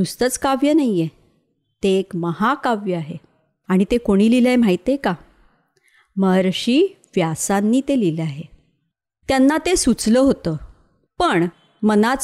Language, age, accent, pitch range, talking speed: Marathi, 30-49, native, 180-255 Hz, 125 wpm